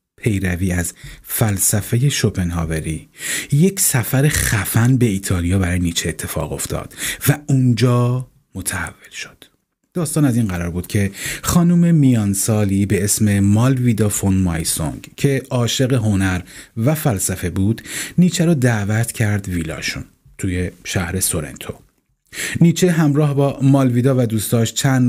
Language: Persian